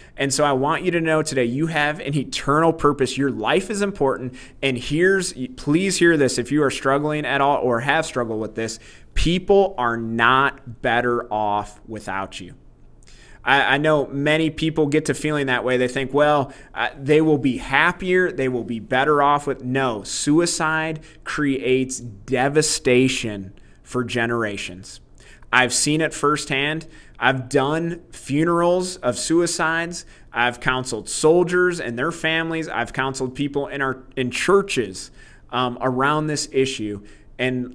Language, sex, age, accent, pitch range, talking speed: English, male, 30-49, American, 125-155 Hz, 155 wpm